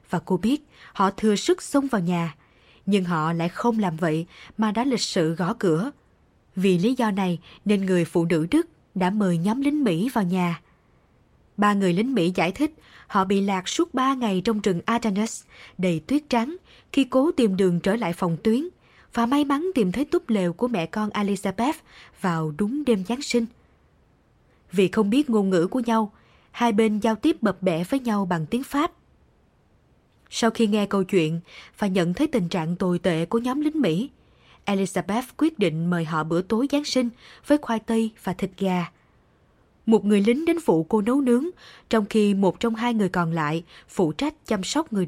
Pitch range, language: 180-240 Hz, Vietnamese